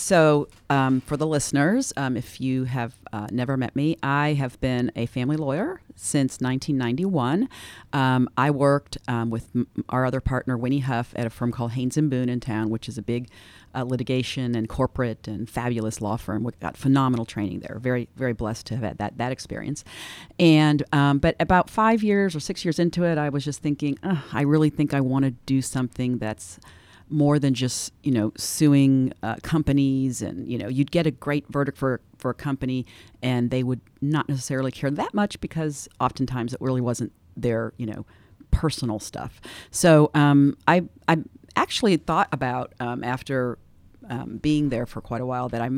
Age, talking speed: 40-59, 195 wpm